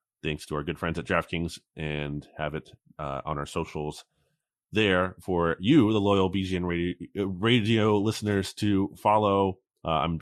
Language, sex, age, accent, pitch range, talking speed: English, male, 30-49, American, 80-100 Hz, 160 wpm